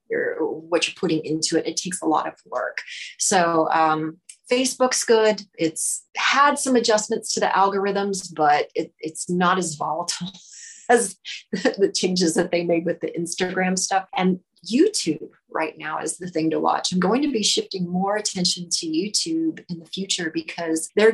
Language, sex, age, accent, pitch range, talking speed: English, female, 30-49, American, 165-205 Hz, 175 wpm